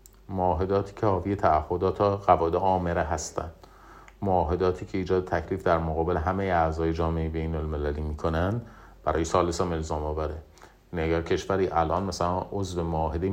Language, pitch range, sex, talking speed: Persian, 80-100 Hz, male, 130 wpm